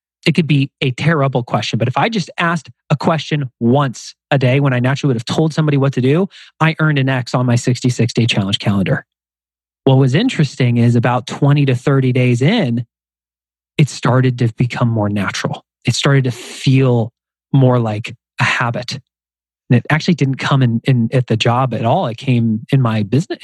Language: English